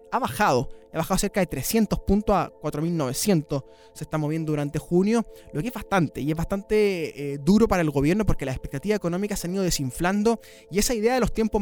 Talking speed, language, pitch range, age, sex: 210 wpm, Spanish, 145-190 Hz, 20-39, male